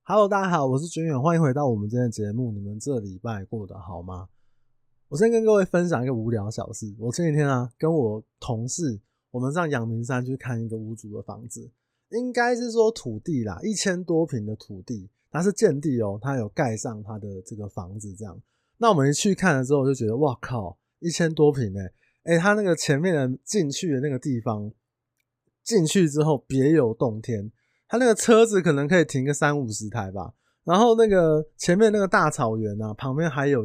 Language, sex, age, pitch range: Chinese, male, 20-39, 115-155 Hz